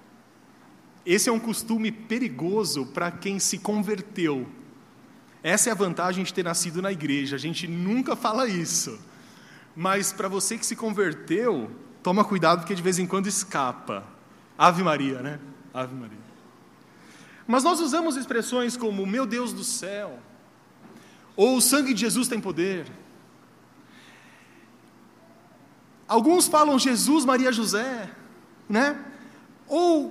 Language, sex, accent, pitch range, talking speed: Portuguese, male, Brazilian, 185-260 Hz, 130 wpm